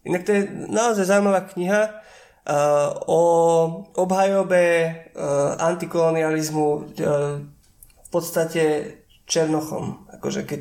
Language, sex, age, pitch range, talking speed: Slovak, male, 20-39, 160-185 Hz, 80 wpm